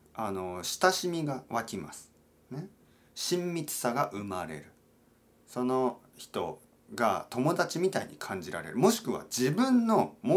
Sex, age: male, 40-59